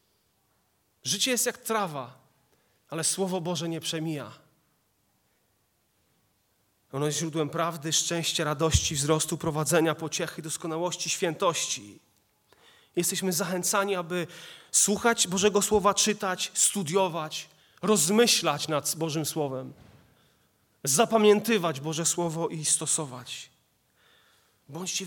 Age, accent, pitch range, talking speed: 30-49, native, 145-185 Hz, 90 wpm